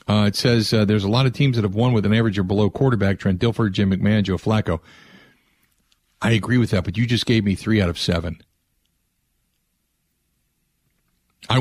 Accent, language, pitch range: American, English, 100-135 Hz